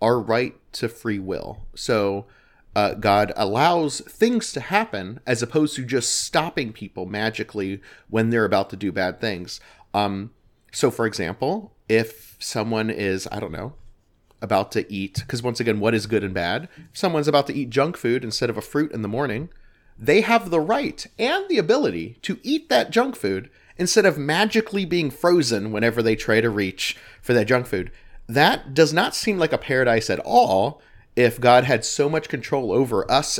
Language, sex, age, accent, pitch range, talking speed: English, male, 30-49, American, 105-145 Hz, 185 wpm